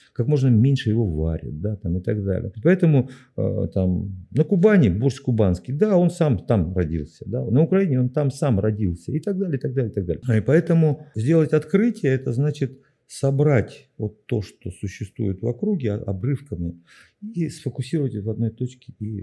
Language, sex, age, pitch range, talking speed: Russian, male, 50-69, 100-135 Hz, 180 wpm